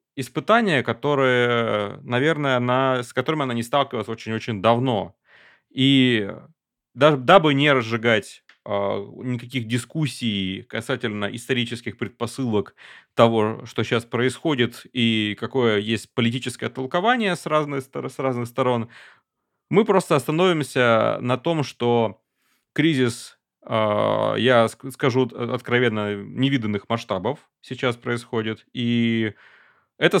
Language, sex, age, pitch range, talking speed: Russian, male, 30-49, 110-135 Hz, 100 wpm